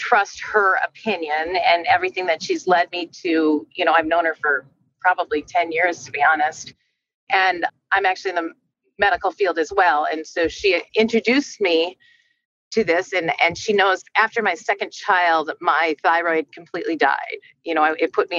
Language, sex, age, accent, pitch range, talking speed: English, female, 40-59, American, 160-220 Hz, 180 wpm